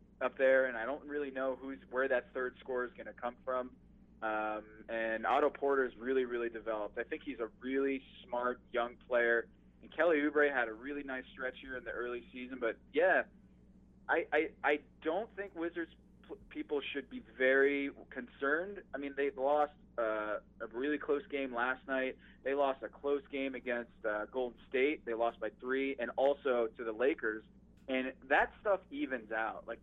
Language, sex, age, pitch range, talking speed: English, male, 20-39, 115-140 Hz, 190 wpm